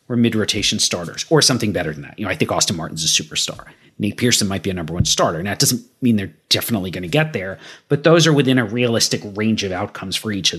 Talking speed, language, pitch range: 265 wpm, English, 105-130 Hz